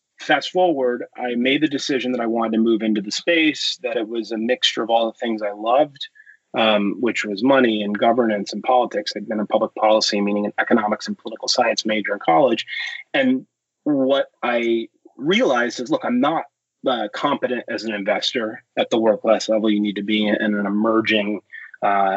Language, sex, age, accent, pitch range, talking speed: English, male, 30-49, American, 105-140 Hz, 200 wpm